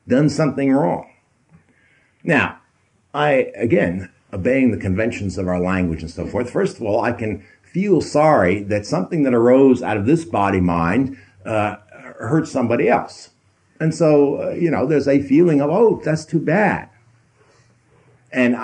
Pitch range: 105-145 Hz